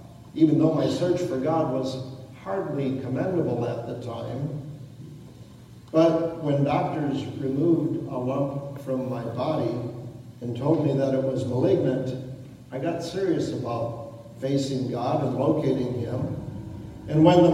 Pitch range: 130-165 Hz